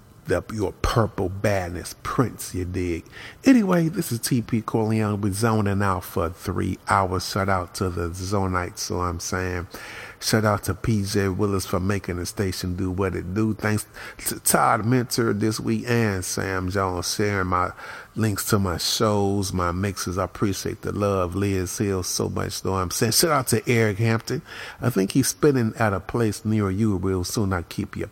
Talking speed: 180 wpm